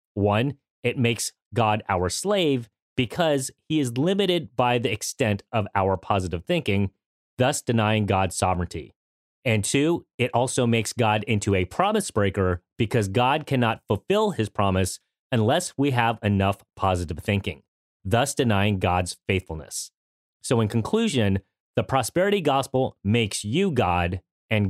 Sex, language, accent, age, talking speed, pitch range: male, English, American, 30-49, 140 wpm, 100-140 Hz